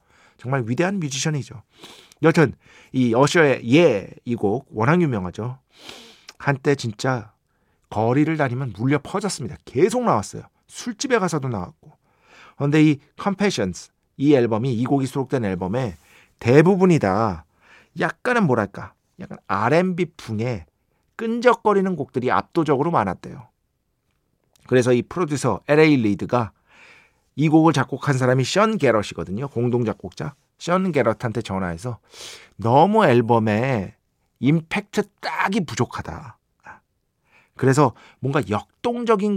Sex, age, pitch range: male, 40-59, 110-155 Hz